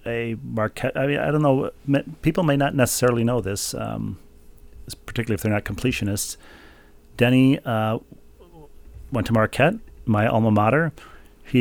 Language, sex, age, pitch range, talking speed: English, male, 40-59, 95-115 Hz, 145 wpm